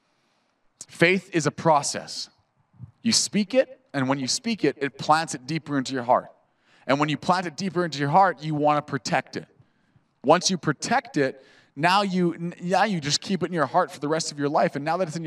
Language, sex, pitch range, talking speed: English, male, 145-190 Hz, 230 wpm